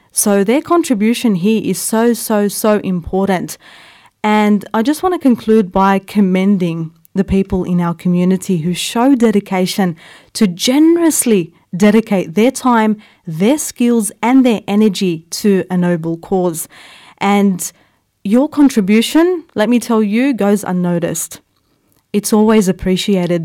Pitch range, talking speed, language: 180-225 Hz, 130 wpm, English